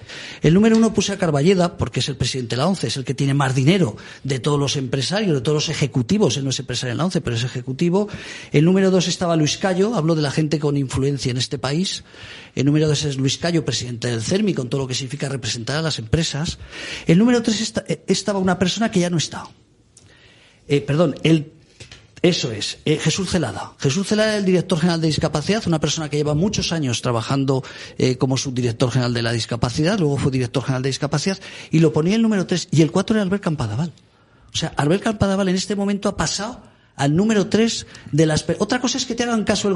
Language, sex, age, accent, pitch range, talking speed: Spanish, male, 40-59, Spanish, 135-185 Hz, 230 wpm